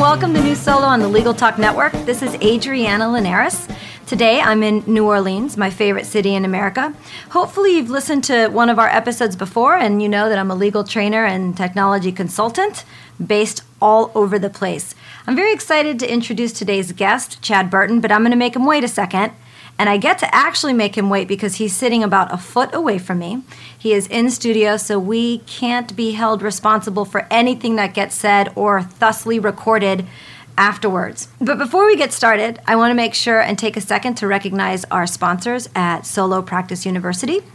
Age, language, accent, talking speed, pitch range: 40-59, English, American, 200 wpm, 200-235 Hz